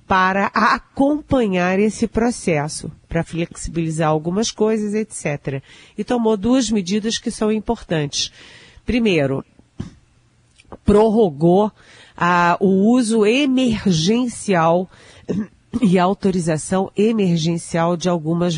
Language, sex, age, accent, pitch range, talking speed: Portuguese, female, 40-59, Brazilian, 160-215 Hz, 85 wpm